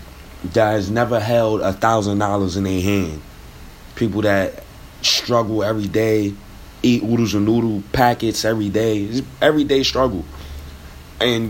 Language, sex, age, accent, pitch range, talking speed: English, male, 20-39, American, 85-120 Hz, 130 wpm